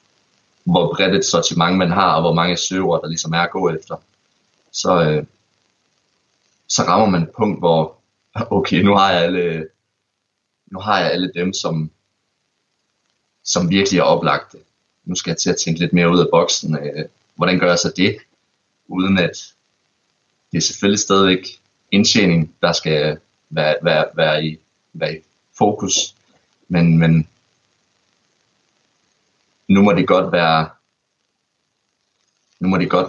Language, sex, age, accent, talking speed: Danish, male, 30-49, native, 145 wpm